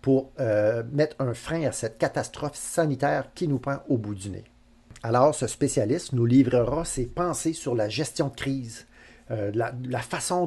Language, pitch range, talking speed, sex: French, 120-165 Hz, 185 wpm, male